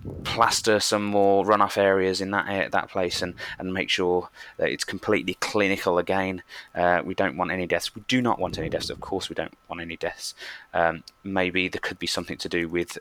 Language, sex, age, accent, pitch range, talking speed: English, male, 20-39, British, 85-95 Hz, 210 wpm